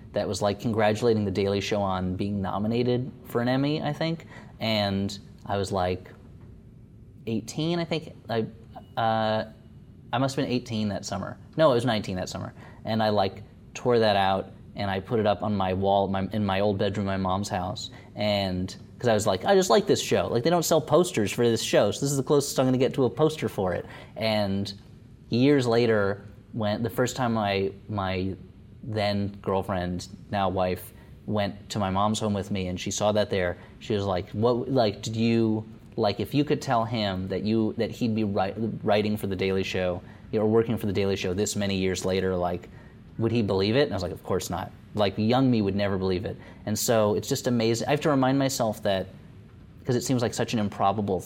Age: 30-49